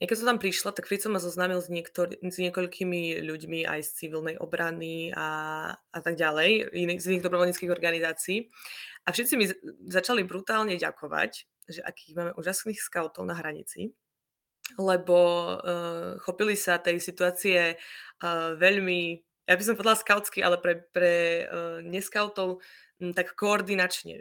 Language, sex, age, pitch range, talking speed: Slovak, female, 20-39, 165-185 Hz, 145 wpm